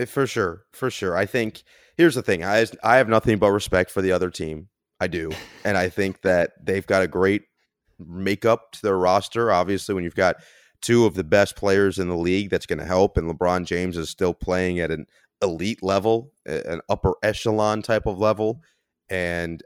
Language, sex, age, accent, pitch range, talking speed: English, male, 30-49, American, 85-100 Hz, 200 wpm